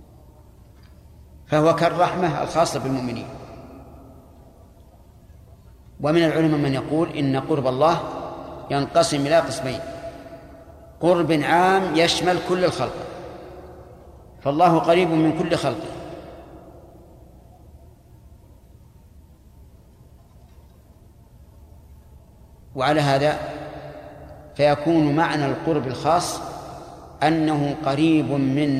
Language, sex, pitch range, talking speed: Arabic, male, 135-165 Hz, 70 wpm